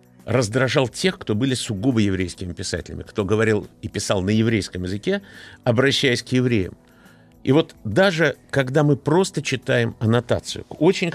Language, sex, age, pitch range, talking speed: Russian, male, 50-69, 110-150 Hz, 145 wpm